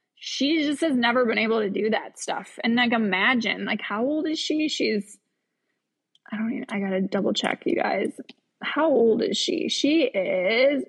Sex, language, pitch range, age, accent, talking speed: female, English, 210-265 Hz, 20-39, American, 195 wpm